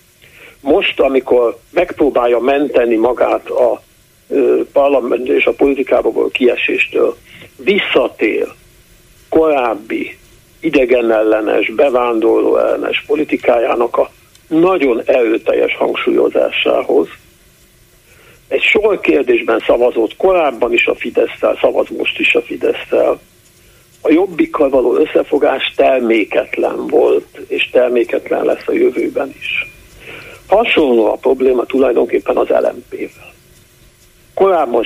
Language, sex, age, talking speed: Hungarian, male, 60-79, 95 wpm